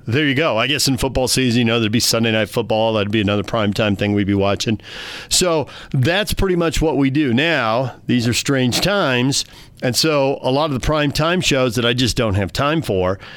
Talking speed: 225 wpm